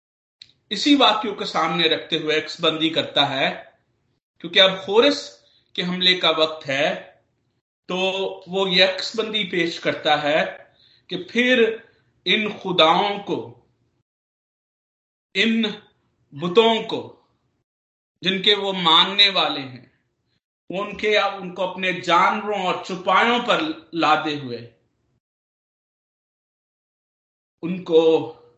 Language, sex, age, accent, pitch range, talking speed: Hindi, male, 50-69, native, 150-215 Hz, 100 wpm